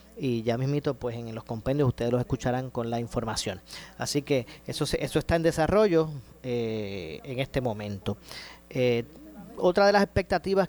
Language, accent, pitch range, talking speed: Spanish, American, 130-170 Hz, 170 wpm